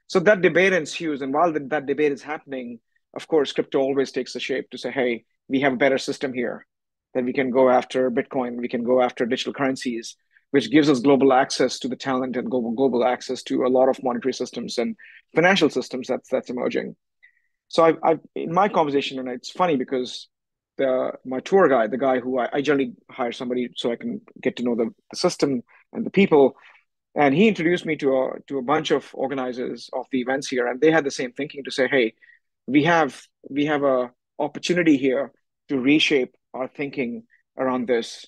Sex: male